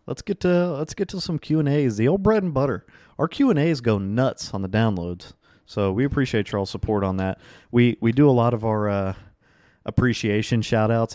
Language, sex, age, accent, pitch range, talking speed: English, male, 30-49, American, 105-120 Hz, 190 wpm